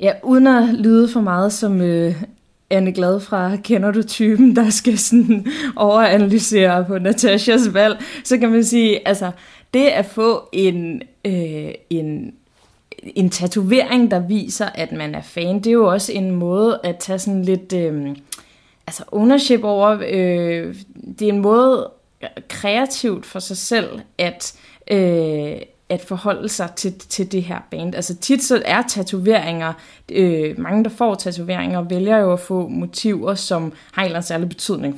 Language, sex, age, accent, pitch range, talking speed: Danish, female, 20-39, native, 185-225 Hz, 145 wpm